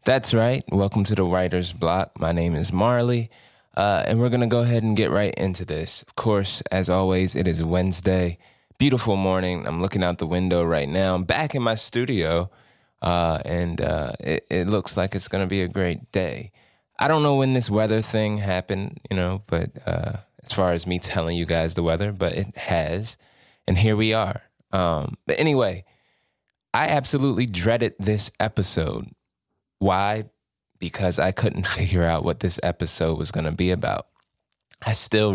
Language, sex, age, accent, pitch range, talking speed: English, male, 20-39, American, 90-110 Hz, 185 wpm